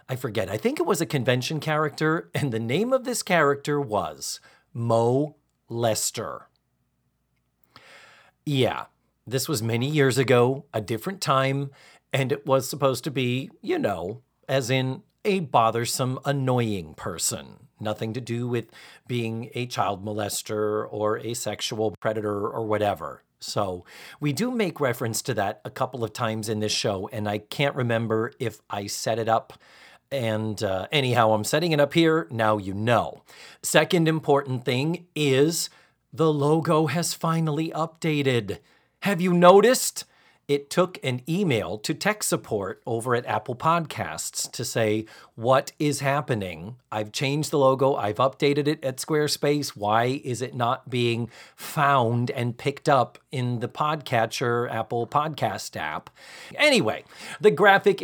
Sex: male